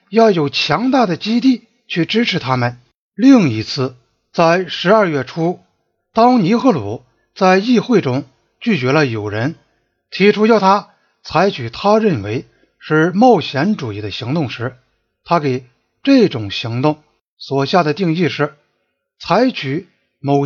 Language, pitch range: Chinese, 135-220 Hz